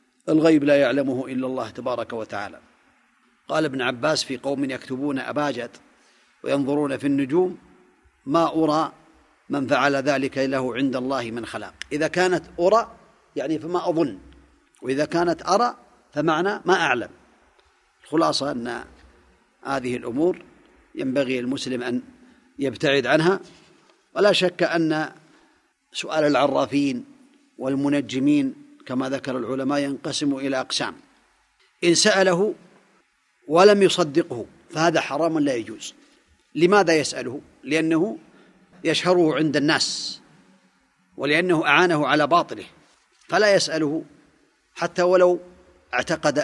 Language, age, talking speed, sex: Arabic, 40-59, 105 wpm, male